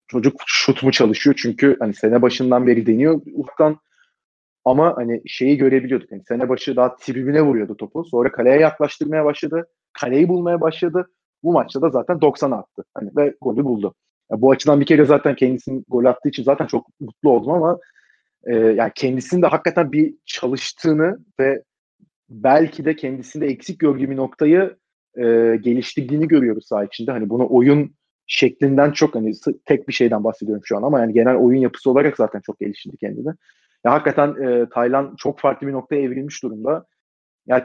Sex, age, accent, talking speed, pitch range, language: male, 40-59, native, 170 wpm, 125-155 Hz, Turkish